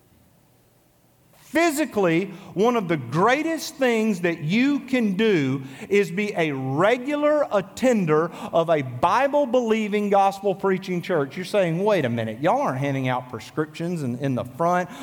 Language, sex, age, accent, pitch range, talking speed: English, male, 40-59, American, 160-225 Hz, 135 wpm